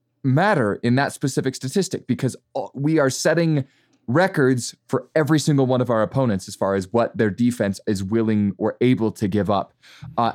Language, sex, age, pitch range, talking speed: English, male, 20-39, 110-140 Hz, 180 wpm